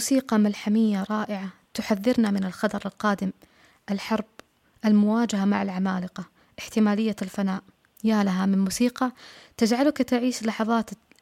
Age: 20-39